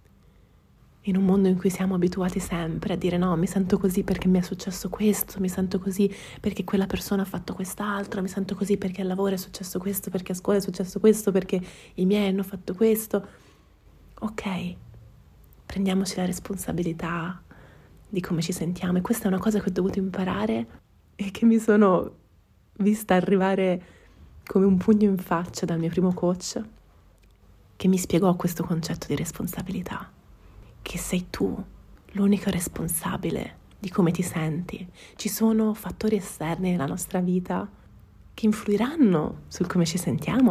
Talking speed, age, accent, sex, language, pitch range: 165 wpm, 20-39, native, female, Italian, 175-200 Hz